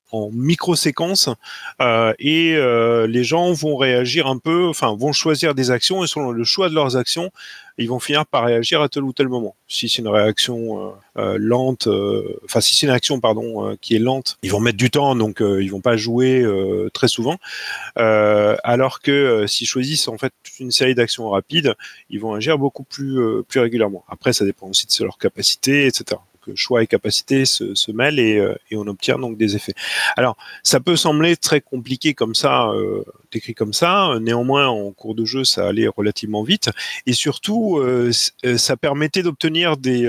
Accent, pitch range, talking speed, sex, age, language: French, 115-155 Hz, 200 wpm, male, 30-49, French